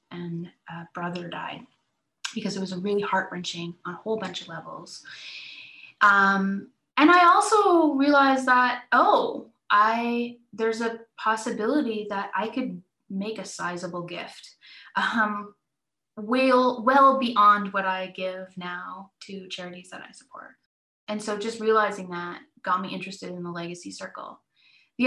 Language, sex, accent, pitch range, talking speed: English, female, American, 185-240 Hz, 145 wpm